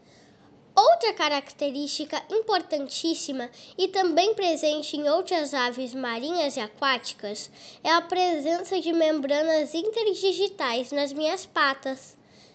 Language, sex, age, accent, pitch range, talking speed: Portuguese, female, 10-29, Brazilian, 280-380 Hz, 100 wpm